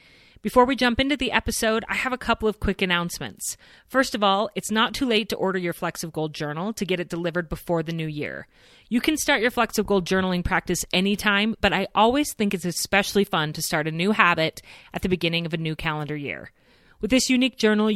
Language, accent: English, American